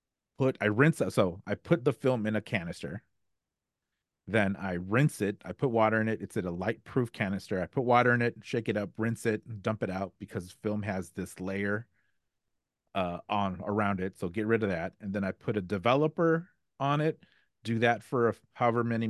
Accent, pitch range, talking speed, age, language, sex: American, 100-120 Hz, 210 wpm, 30-49, English, male